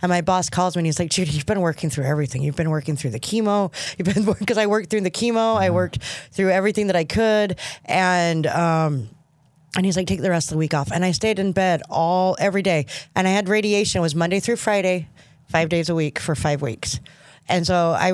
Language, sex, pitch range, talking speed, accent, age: English, female, 155-195 Hz, 245 wpm, American, 20-39